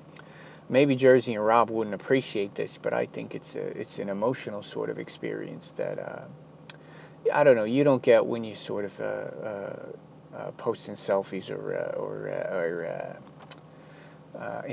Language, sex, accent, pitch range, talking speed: English, male, American, 120-170 Hz, 170 wpm